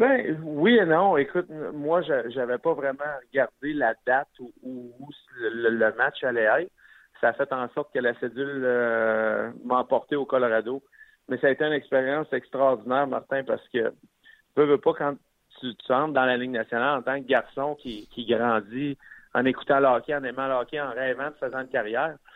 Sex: male